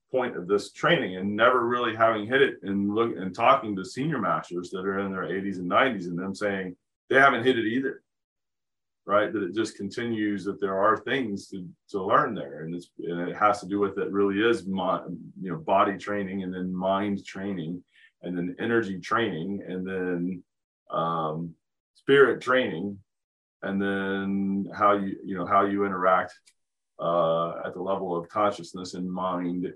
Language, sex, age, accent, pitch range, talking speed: English, male, 30-49, American, 90-105 Hz, 185 wpm